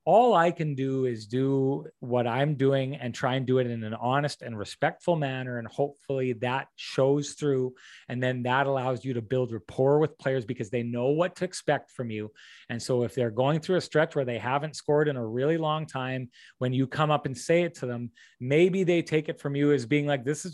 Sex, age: male, 30-49